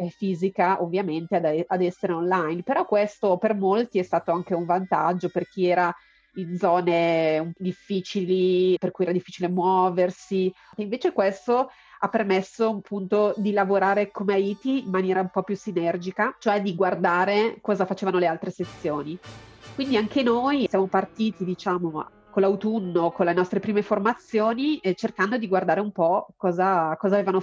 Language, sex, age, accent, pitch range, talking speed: Italian, female, 30-49, native, 180-210 Hz, 160 wpm